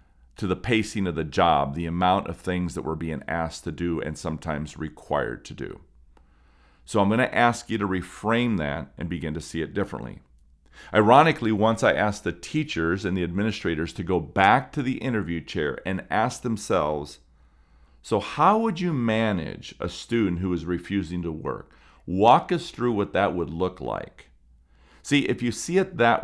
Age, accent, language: 40-59, American, English